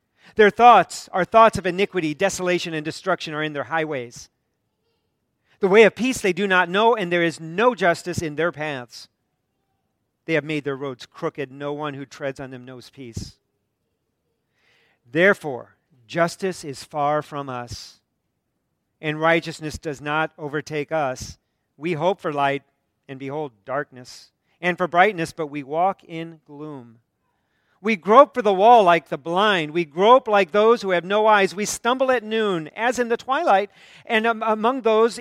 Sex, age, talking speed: male, 40-59, 165 wpm